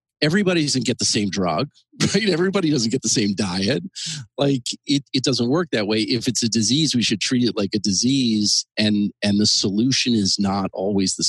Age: 40-59